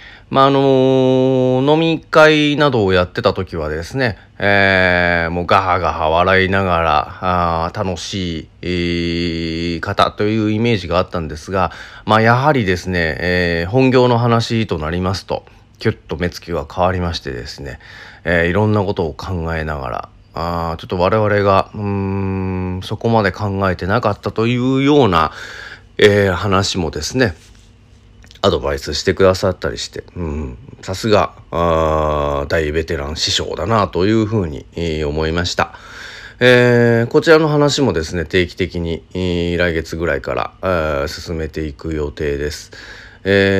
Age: 40-59